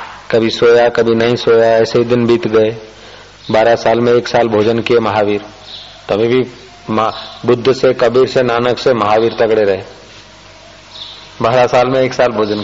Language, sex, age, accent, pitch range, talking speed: Hindi, male, 40-59, native, 110-140 Hz, 165 wpm